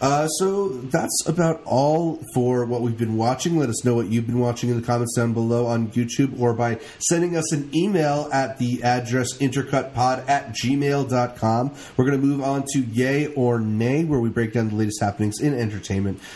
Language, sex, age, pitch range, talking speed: English, male, 30-49, 120-150 Hz, 200 wpm